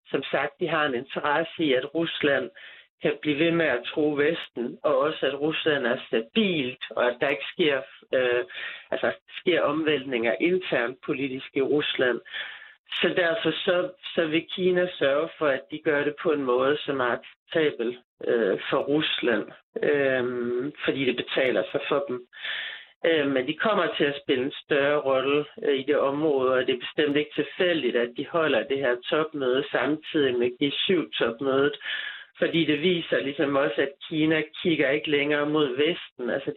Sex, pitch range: male, 135-160 Hz